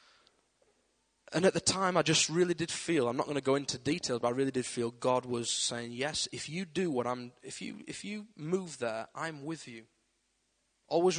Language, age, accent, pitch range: English, 20-39, British, 120-150 Hz